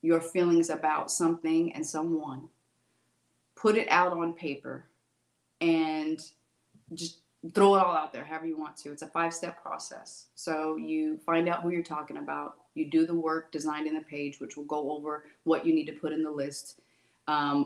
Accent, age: American, 30-49